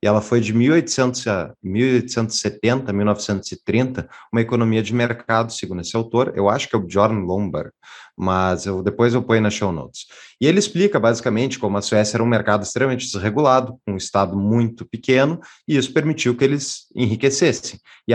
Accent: Brazilian